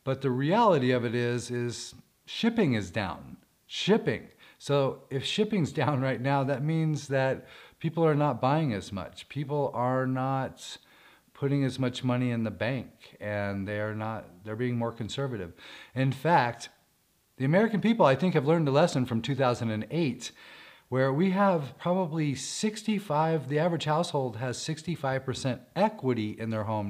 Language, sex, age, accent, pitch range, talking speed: English, male, 40-59, American, 120-160 Hz, 160 wpm